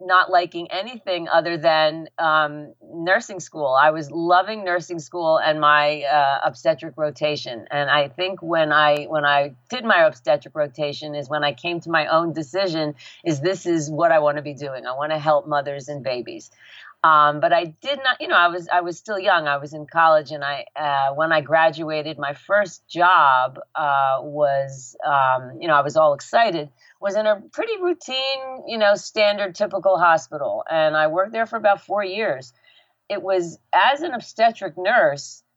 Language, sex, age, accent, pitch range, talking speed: English, female, 40-59, American, 150-200 Hz, 185 wpm